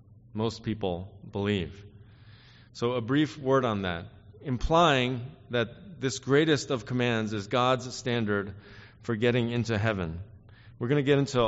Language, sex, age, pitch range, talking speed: English, male, 40-59, 105-125 Hz, 140 wpm